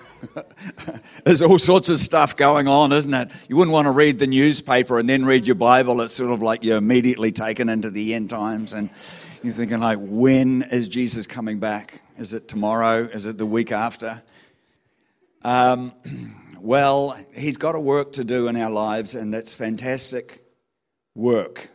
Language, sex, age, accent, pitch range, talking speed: English, male, 50-69, Australian, 110-140 Hz, 175 wpm